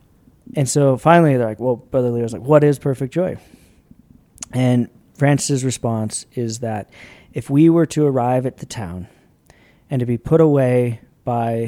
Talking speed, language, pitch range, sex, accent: 165 wpm, English, 115-140 Hz, male, American